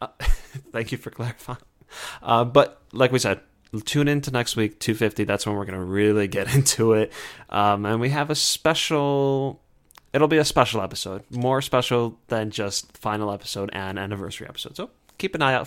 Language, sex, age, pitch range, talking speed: English, male, 20-39, 105-130 Hz, 190 wpm